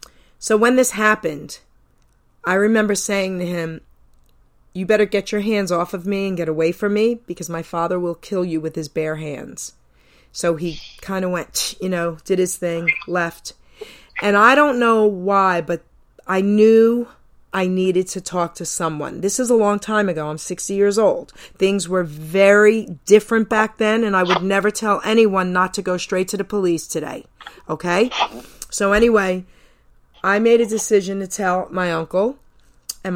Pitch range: 170-205 Hz